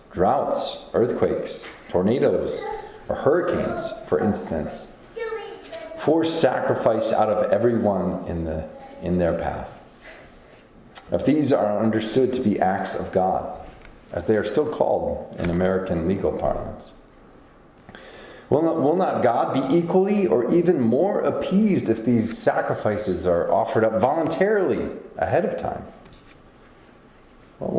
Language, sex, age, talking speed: English, male, 30-49, 125 wpm